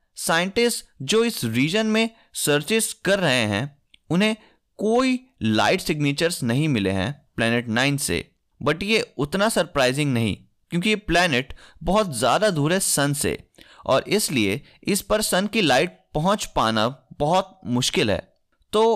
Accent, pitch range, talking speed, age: native, 130-195 Hz, 145 wpm, 20-39